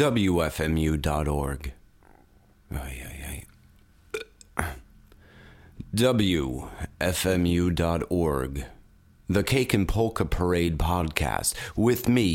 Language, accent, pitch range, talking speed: English, American, 80-125 Hz, 50 wpm